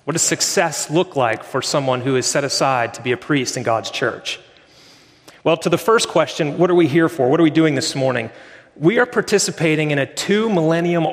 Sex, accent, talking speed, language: male, American, 220 wpm, English